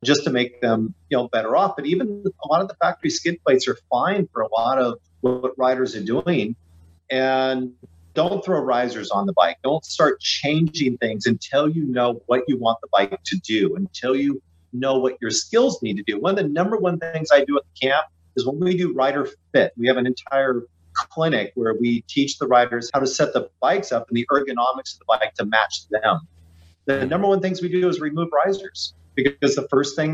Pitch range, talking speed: 115-160 Hz, 225 wpm